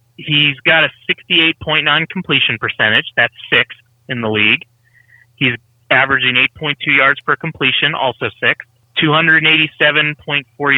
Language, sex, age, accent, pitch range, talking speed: English, male, 30-49, American, 120-145 Hz, 110 wpm